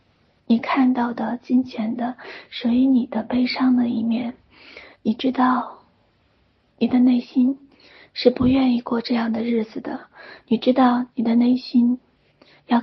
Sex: female